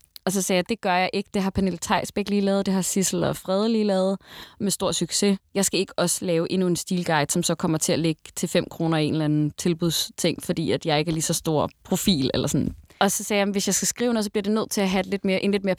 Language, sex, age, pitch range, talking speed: Danish, female, 20-39, 170-200 Hz, 300 wpm